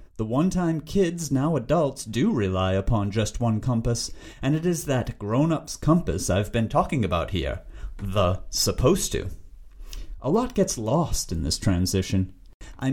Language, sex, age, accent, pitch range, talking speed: English, male, 30-49, American, 95-155 Hz, 155 wpm